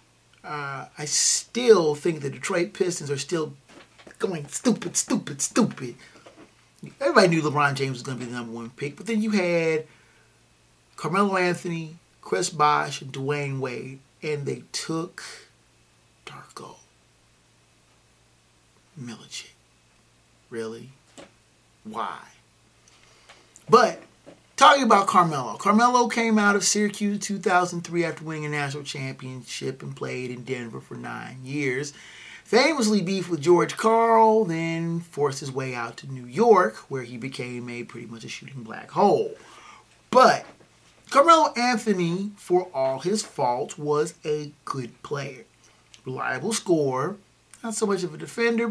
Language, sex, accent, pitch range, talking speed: English, male, American, 135-205 Hz, 135 wpm